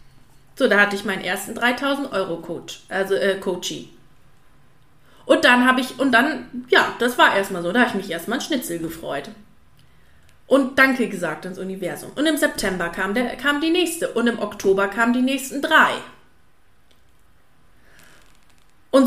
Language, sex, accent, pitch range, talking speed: German, female, German, 190-265 Hz, 155 wpm